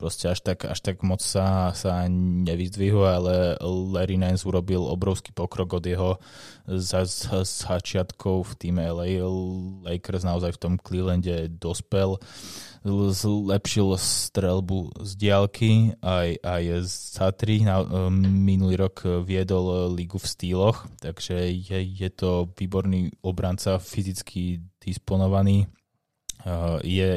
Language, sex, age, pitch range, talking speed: Slovak, male, 20-39, 90-100 Hz, 115 wpm